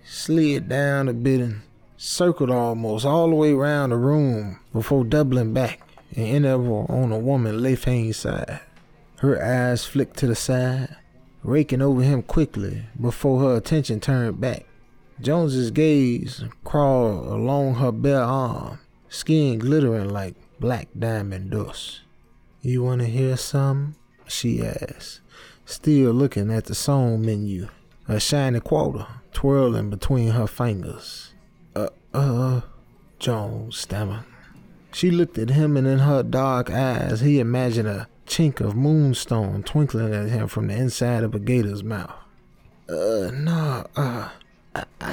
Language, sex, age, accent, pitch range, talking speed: English, male, 20-39, American, 115-140 Hz, 135 wpm